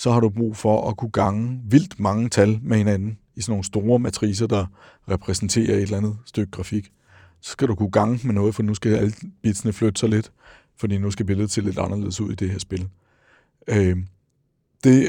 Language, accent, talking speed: Danish, native, 210 wpm